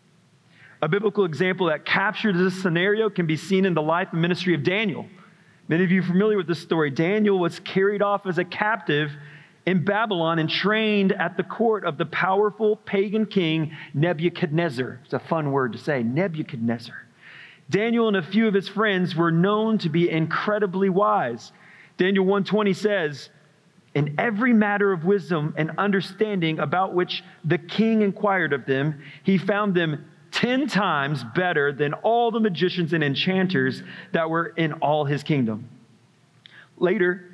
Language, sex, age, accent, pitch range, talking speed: English, male, 40-59, American, 165-210 Hz, 160 wpm